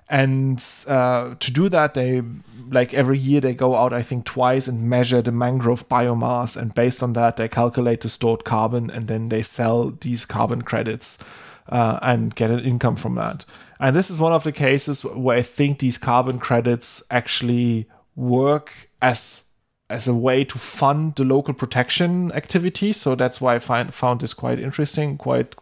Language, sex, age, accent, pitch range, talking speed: English, male, 20-39, German, 120-135 Hz, 185 wpm